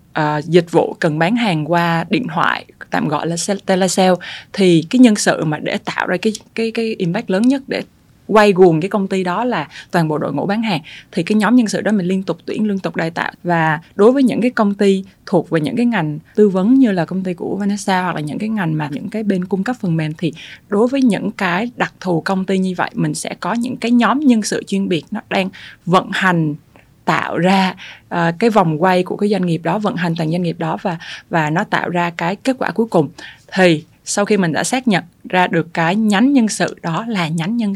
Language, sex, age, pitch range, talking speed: Vietnamese, female, 20-39, 165-215 Hz, 250 wpm